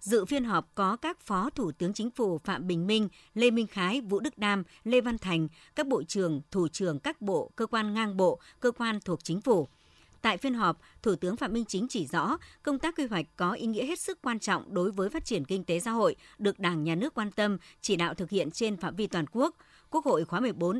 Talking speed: 250 wpm